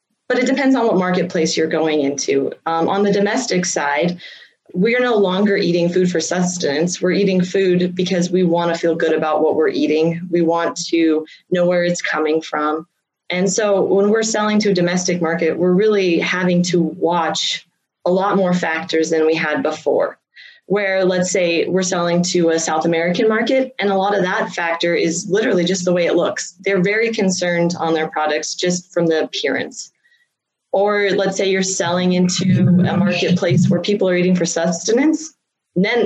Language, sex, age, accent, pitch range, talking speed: English, female, 20-39, American, 165-195 Hz, 190 wpm